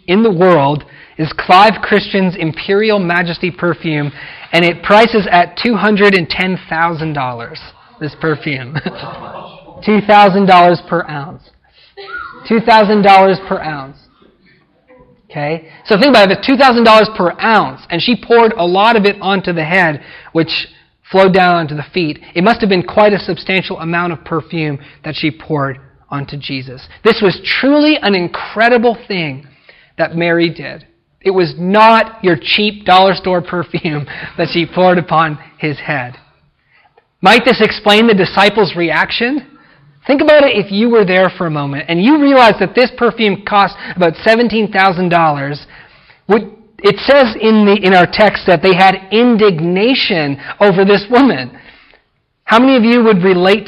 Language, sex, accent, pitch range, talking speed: English, male, American, 165-215 Hz, 145 wpm